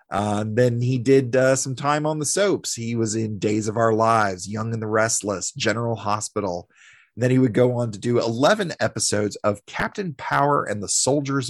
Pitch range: 110-180 Hz